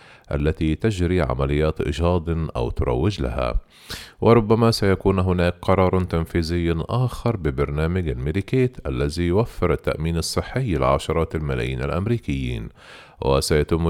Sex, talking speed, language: male, 100 wpm, Arabic